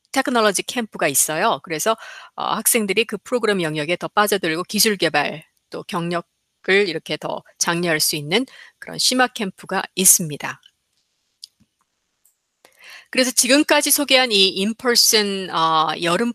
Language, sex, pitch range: Korean, female, 185-255 Hz